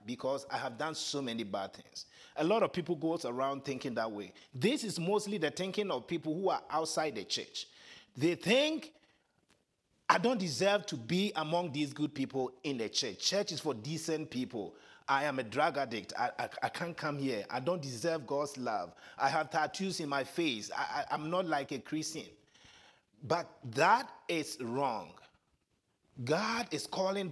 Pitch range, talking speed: 140-195 Hz, 180 wpm